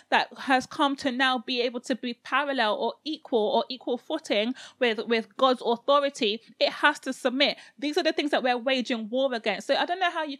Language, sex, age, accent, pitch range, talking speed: English, female, 30-49, British, 240-285 Hz, 220 wpm